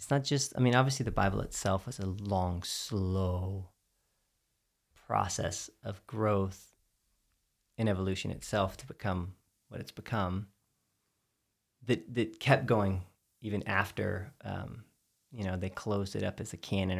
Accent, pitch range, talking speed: American, 100-120 Hz, 140 wpm